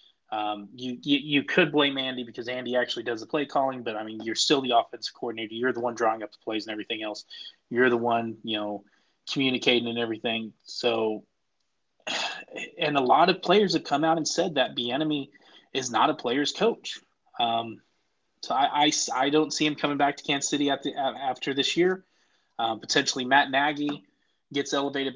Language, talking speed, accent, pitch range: English, 200 wpm, American, 120-140 Hz